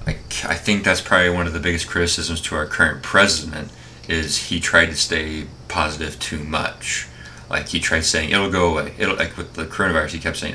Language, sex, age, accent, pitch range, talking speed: English, male, 20-39, American, 80-90 Hz, 210 wpm